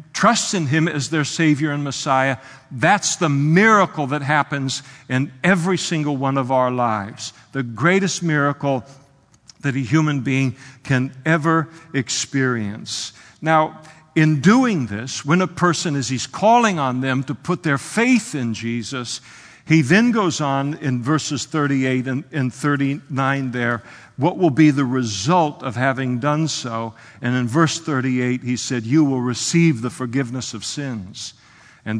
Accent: American